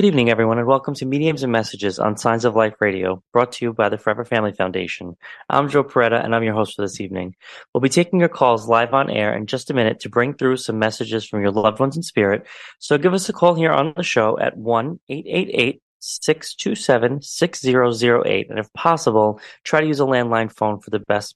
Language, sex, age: English, male, 20-39